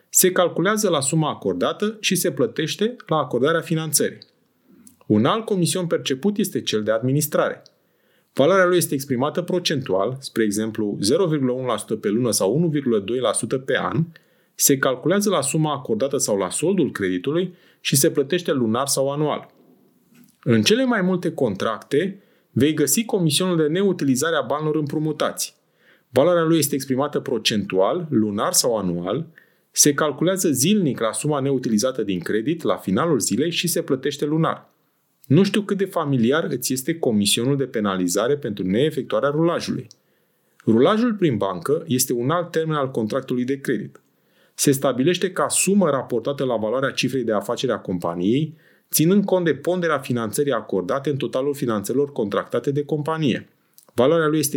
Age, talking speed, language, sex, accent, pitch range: 30-49, 150 wpm, Romanian, male, native, 130-175 Hz